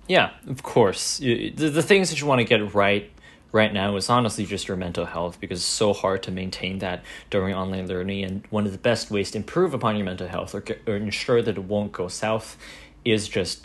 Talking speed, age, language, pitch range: 230 wpm, 20-39, English, 105-130 Hz